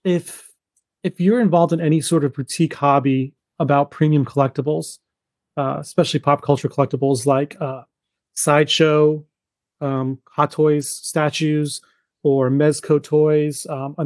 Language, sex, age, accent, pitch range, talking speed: English, male, 30-49, American, 135-155 Hz, 125 wpm